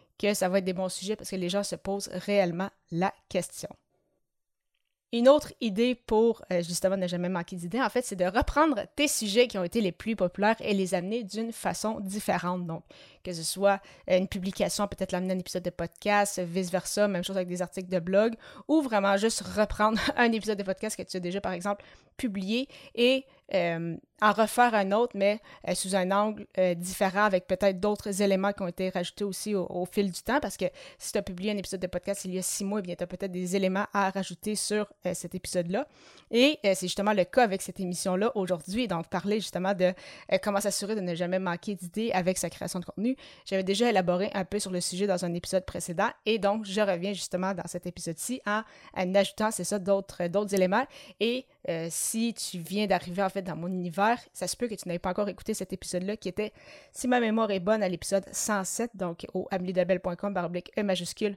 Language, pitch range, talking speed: French, 185-215 Hz, 220 wpm